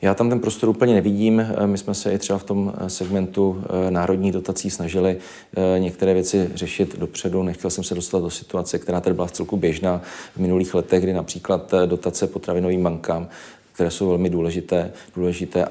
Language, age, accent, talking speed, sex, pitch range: Czech, 40-59, native, 175 wpm, male, 85-95 Hz